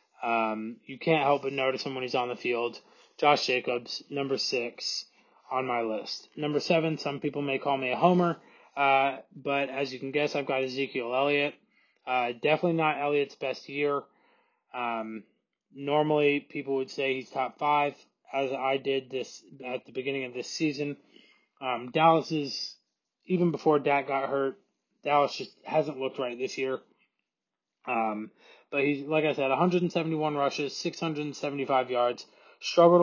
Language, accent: English, American